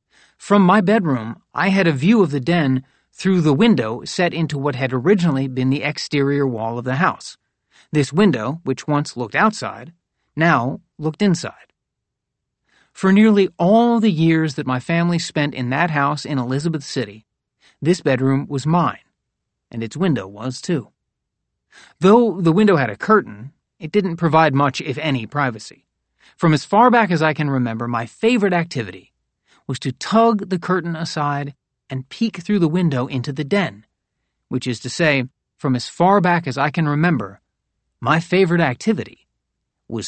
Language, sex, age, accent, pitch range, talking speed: English, male, 40-59, American, 130-175 Hz, 170 wpm